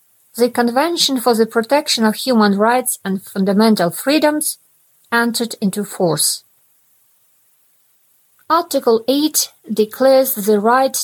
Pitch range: 210-260 Hz